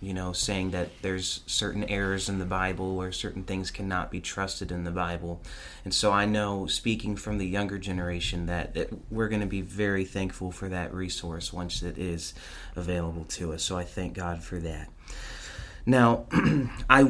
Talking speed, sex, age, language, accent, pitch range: 185 wpm, male, 30-49, English, American, 90-120 Hz